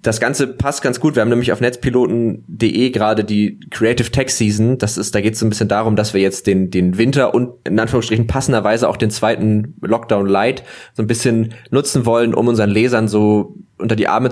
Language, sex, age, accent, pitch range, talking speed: German, male, 20-39, German, 105-125 Hz, 215 wpm